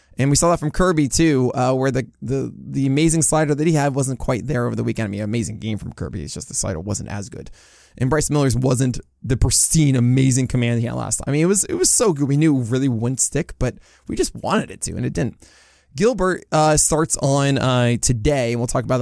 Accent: American